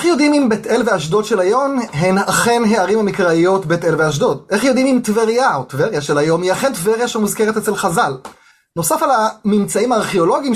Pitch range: 180-240 Hz